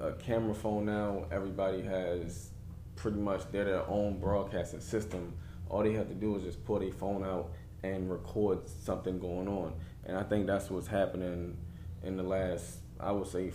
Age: 20-39